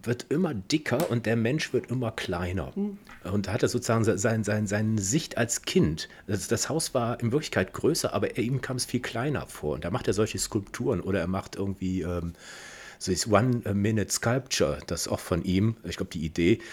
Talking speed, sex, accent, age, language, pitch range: 215 wpm, male, German, 40-59, German, 100-125 Hz